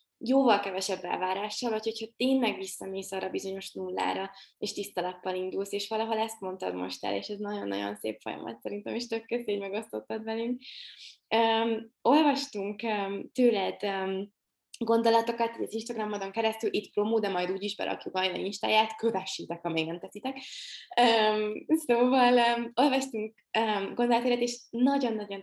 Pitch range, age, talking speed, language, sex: 190-235 Hz, 20-39, 140 wpm, Hungarian, female